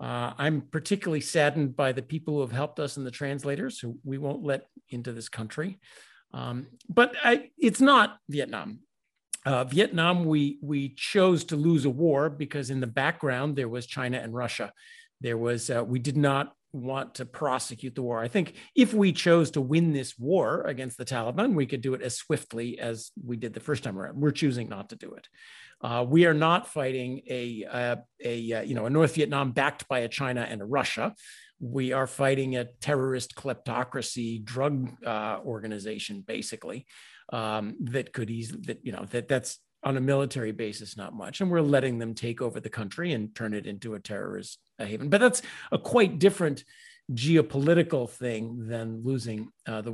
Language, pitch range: English, 120-160 Hz